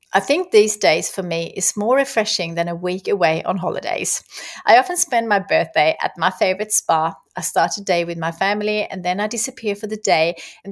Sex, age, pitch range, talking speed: female, 30-49, 180-235 Hz, 220 wpm